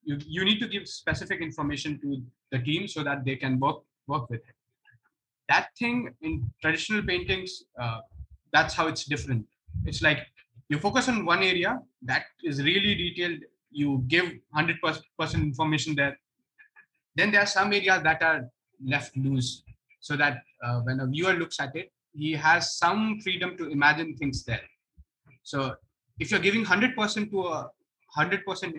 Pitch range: 130-165 Hz